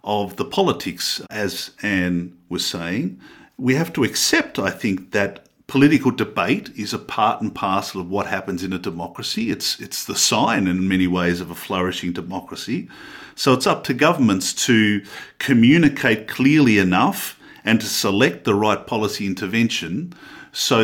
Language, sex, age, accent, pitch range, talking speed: English, male, 50-69, Australian, 100-130 Hz, 160 wpm